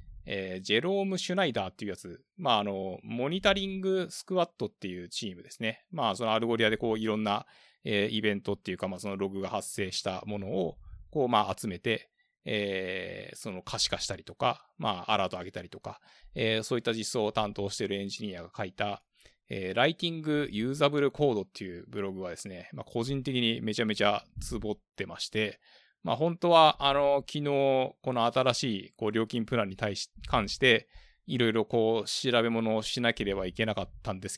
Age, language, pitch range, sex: 20-39, Japanese, 100-125 Hz, male